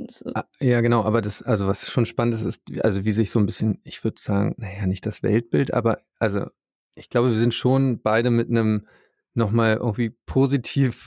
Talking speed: 195 wpm